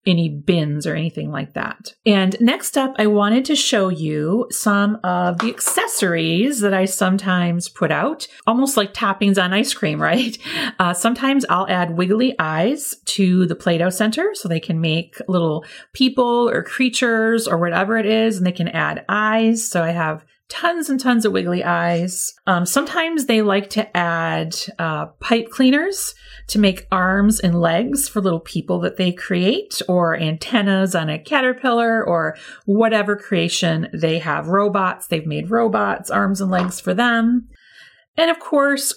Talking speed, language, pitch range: 170 wpm, English, 170-230 Hz